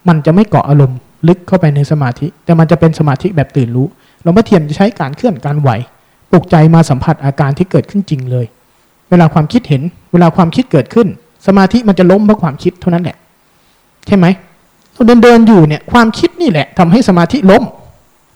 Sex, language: male, Thai